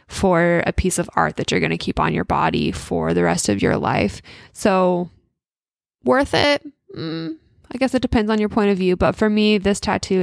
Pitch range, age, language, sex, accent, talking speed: 175-230 Hz, 10-29, English, female, American, 215 wpm